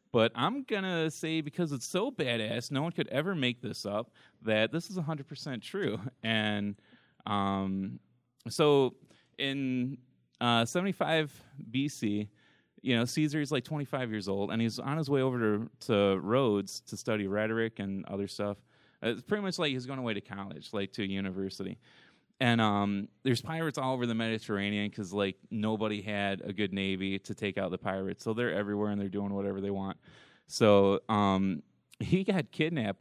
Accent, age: American, 20-39